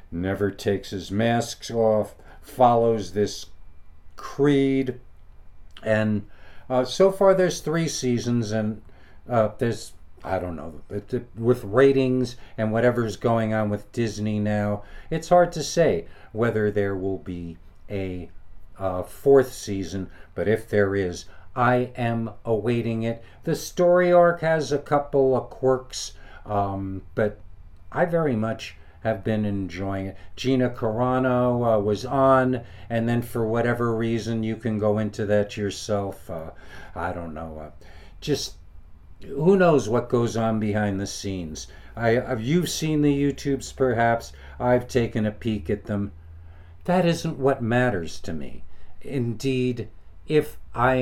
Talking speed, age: 140 wpm, 60-79